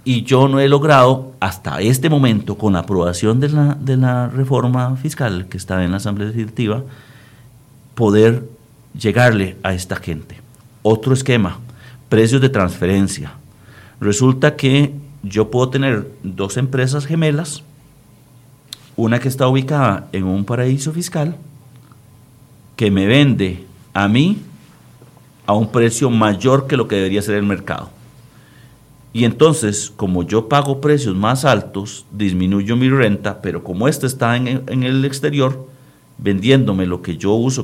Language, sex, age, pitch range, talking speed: Spanish, male, 50-69, 105-135 Hz, 140 wpm